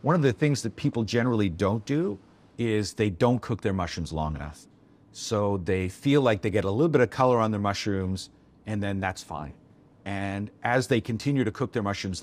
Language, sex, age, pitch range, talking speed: English, male, 50-69, 100-130 Hz, 210 wpm